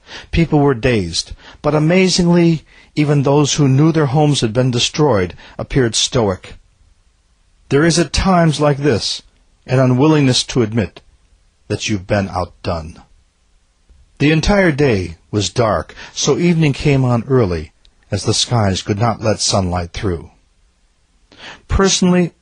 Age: 50-69